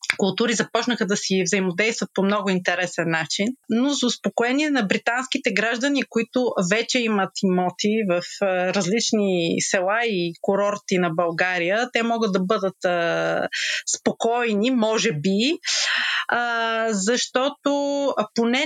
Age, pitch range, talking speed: 30-49, 190-235 Hz, 115 wpm